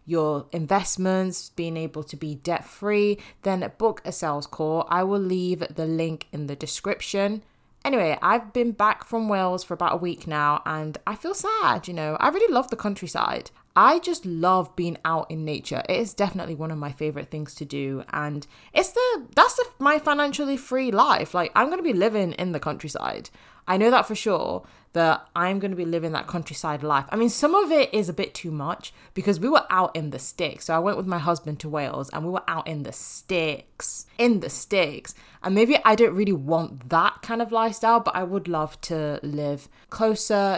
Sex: female